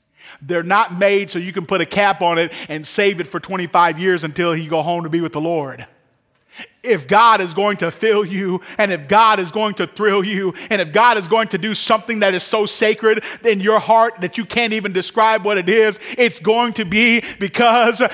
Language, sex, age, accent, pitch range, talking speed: English, male, 40-59, American, 155-225 Hz, 230 wpm